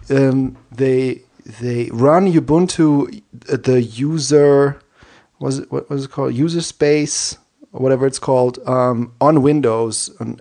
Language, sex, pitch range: English, male, 120-135 Hz